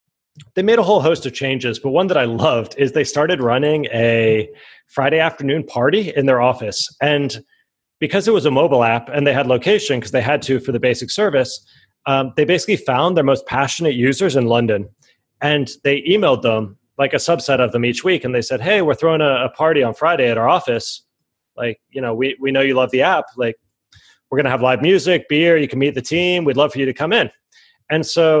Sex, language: male, English